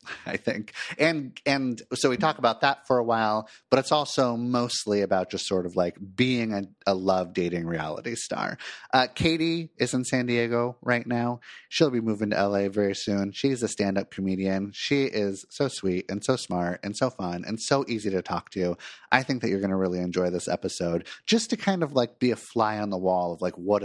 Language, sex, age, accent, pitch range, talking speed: English, male, 30-49, American, 100-135 Hz, 220 wpm